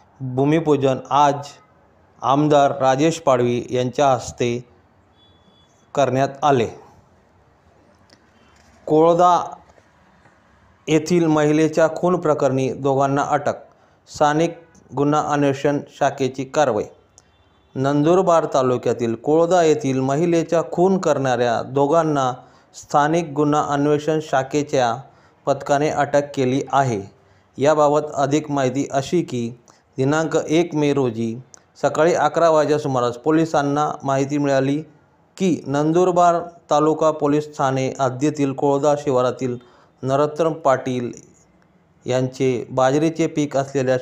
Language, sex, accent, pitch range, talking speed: Marathi, male, native, 130-155 Hz, 95 wpm